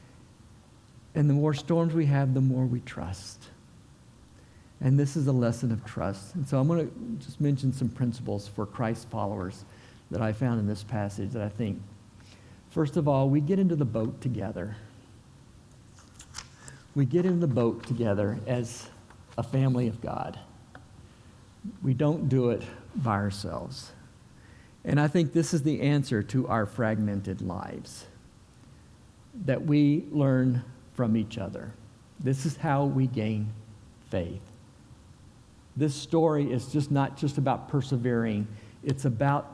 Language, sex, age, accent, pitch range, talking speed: English, male, 50-69, American, 110-145 Hz, 145 wpm